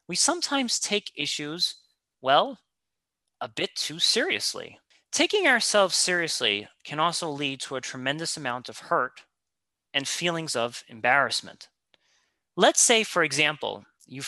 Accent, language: American, English